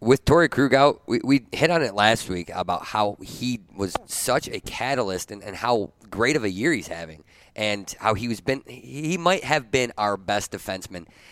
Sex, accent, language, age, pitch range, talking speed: male, American, English, 30-49, 95-120 Hz, 200 wpm